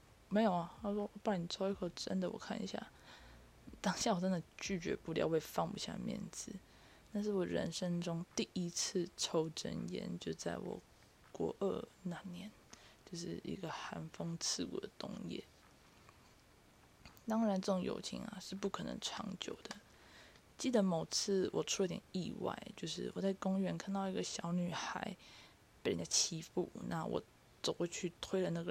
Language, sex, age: Chinese, female, 20-39